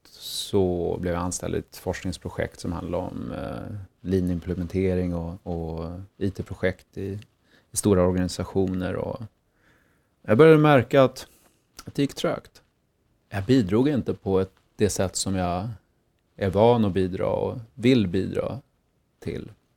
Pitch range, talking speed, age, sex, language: 90-115 Hz, 135 wpm, 30-49, male, Swedish